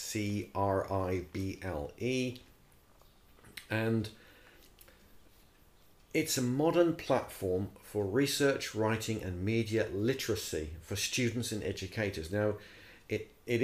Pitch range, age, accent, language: 95-120 Hz, 50-69, British, English